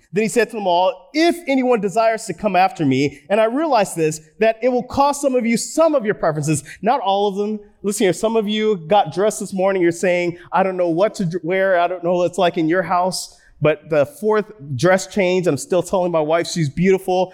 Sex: male